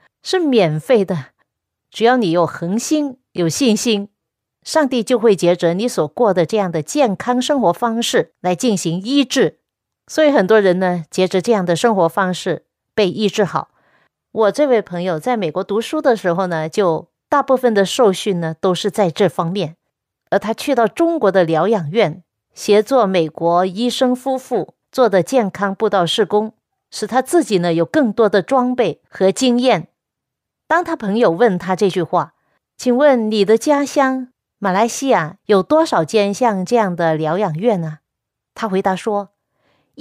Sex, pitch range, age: female, 185-260 Hz, 50-69